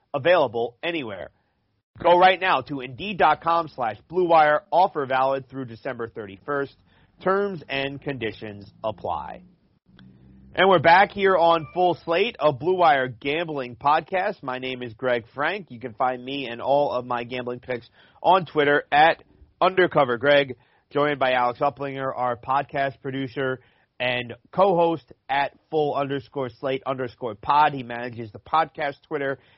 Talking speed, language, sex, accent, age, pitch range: 145 wpm, English, male, American, 40-59, 125-155 Hz